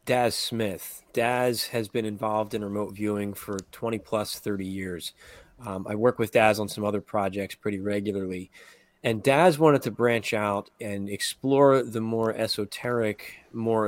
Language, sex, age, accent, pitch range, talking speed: English, male, 30-49, American, 100-120 Hz, 160 wpm